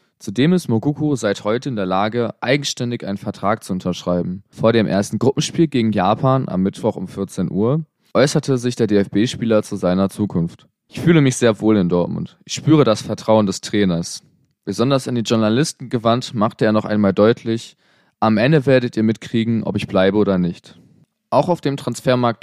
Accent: German